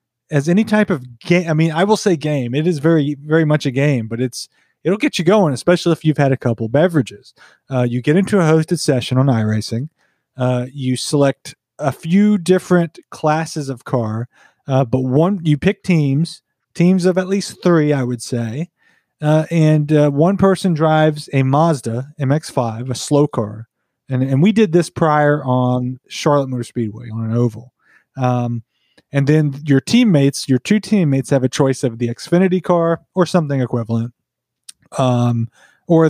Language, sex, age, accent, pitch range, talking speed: English, male, 30-49, American, 125-165 Hz, 180 wpm